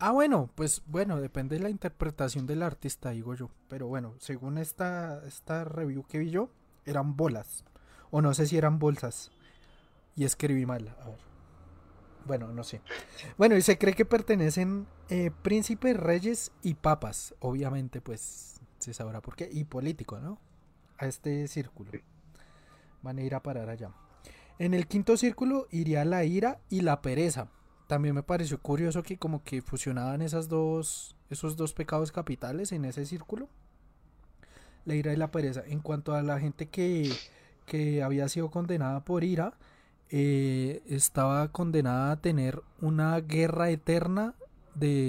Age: 30-49